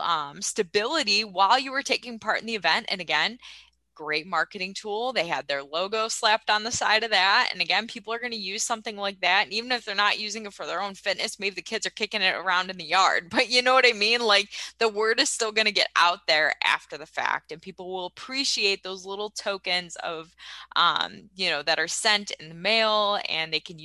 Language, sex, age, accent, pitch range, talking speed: English, female, 20-39, American, 160-205 Hz, 235 wpm